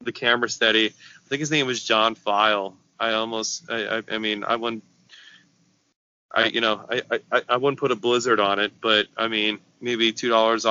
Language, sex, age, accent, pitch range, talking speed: English, male, 20-39, American, 110-120 Hz, 195 wpm